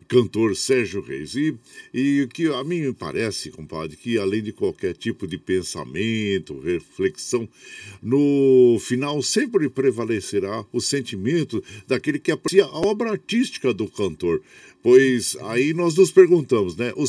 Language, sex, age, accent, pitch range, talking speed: Portuguese, male, 50-69, Brazilian, 110-170 Hz, 140 wpm